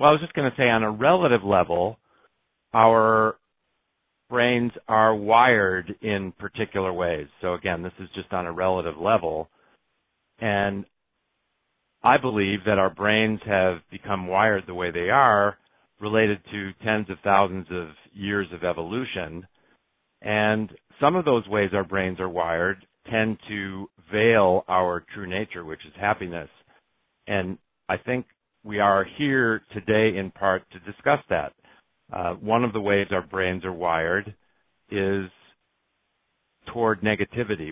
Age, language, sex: 50-69, English, male